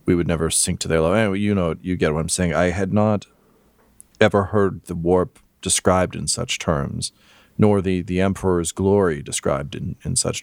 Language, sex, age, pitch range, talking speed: English, male, 40-59, 80-100 Hz, 200 wpm